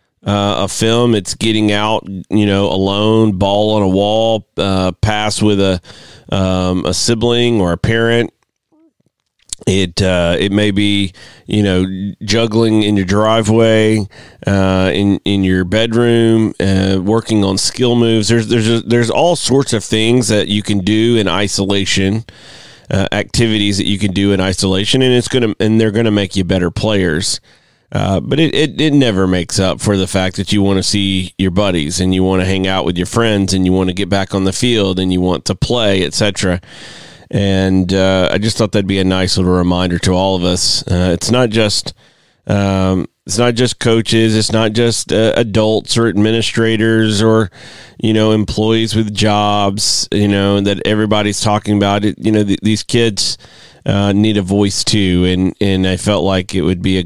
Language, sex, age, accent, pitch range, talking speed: English, male, 30-49, American, 95-110 Hz, 190 wpm